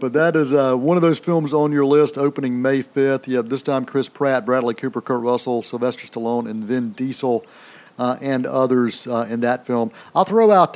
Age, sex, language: 50-69, male, English